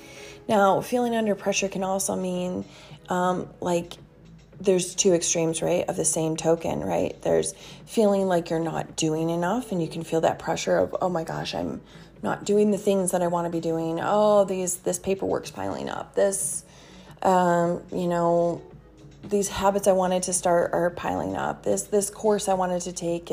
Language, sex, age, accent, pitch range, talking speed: English, female, 30-49, American, 165-195 Hz, 185 wpm